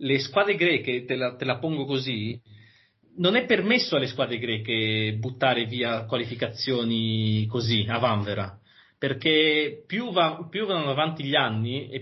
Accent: native